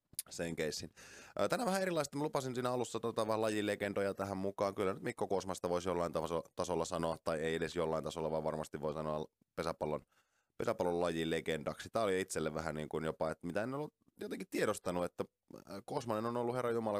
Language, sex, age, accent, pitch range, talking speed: Finnish, male, 20-39, native, 80-115 Hz, 185 wpm